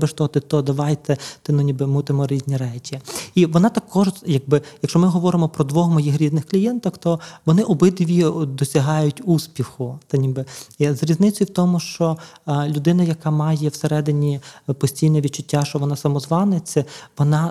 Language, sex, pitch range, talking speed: Ukrainian, male, 145-165 Hz, 160 wpm